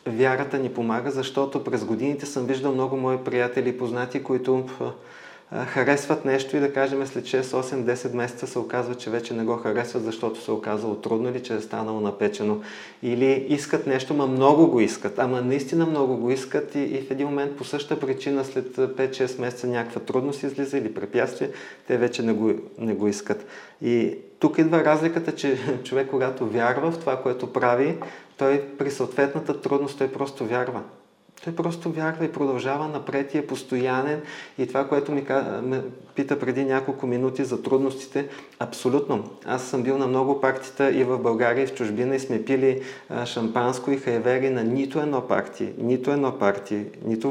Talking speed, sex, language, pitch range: 180 wpm, male, Bulgarian, 125-140 Hz